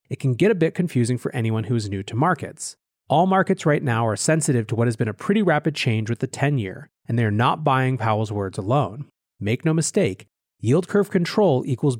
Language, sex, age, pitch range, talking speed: English, male, 30-49, 115-160 Hz, 225 wpm